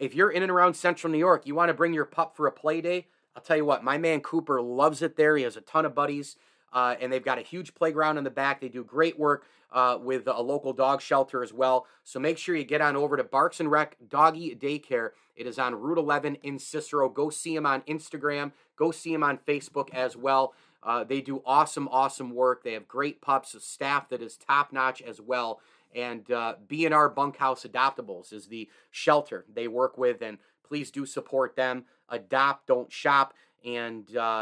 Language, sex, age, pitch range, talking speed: English, male, 30-49, 130-155 Hz, 220 wpm